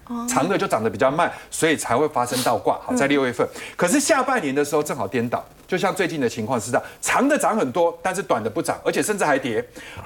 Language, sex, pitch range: Chinese, male, 150-245 Hz